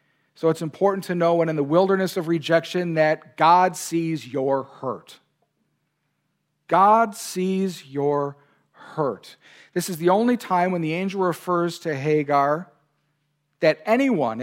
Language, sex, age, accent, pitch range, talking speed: English, male, 50-69, American, 145-190 Hz, 135 wpm